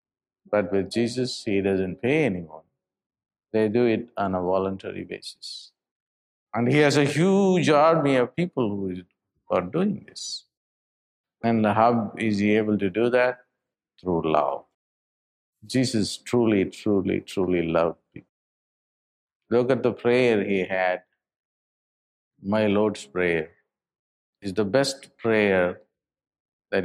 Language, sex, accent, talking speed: English, male, Indian, 125 wpm